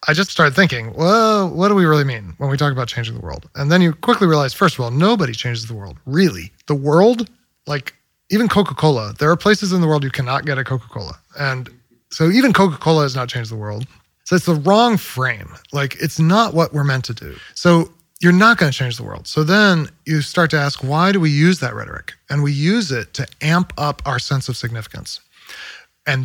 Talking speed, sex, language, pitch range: 230 wpm, male, English, 135-180 Hz